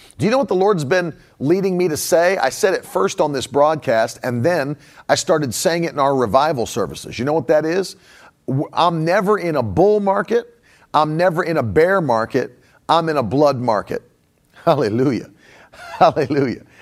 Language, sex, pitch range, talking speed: English, male, 140-190 Hz, 185 wpm